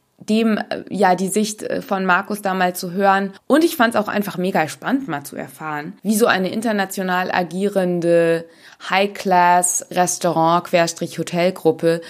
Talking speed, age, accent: 130 wpm, 20-39, German